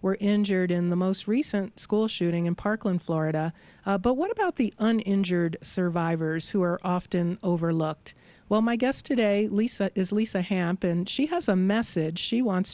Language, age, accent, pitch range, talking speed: English, 50-69, American, 175-205 Hz, 175 wpm